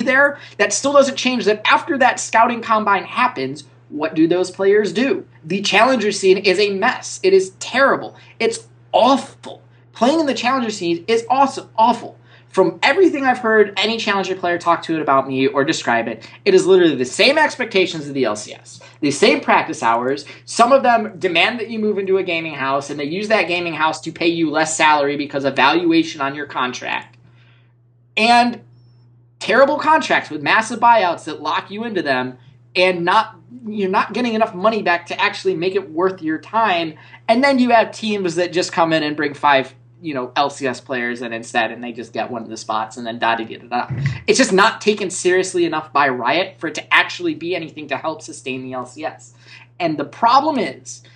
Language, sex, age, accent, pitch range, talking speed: English, male, 20-39, American, 135-220 Hz, 205 wpm